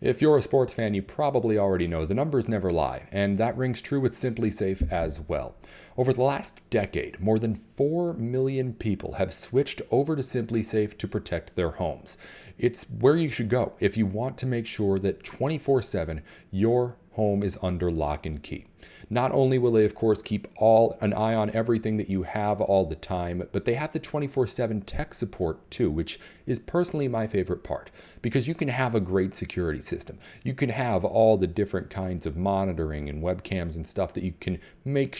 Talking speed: 200 wpm